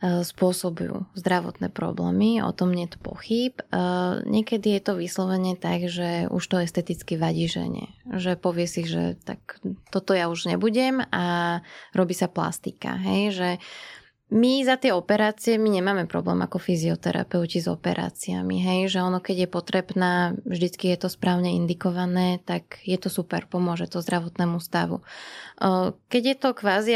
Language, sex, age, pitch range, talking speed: Slovak, female, 20-39, 175-195 Hz, 155 wpm